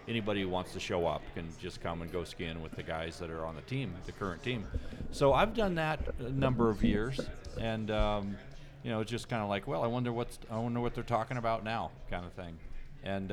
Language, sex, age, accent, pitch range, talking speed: English, male, 40-59, American, 90-120 Hz, 250 wpm